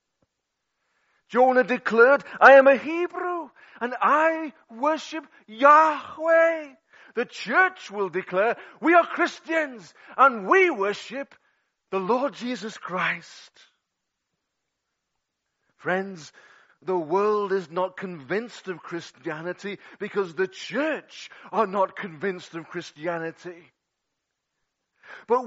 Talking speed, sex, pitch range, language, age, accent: 95 wpm, male, 185-285 Hz, English, 40-59, British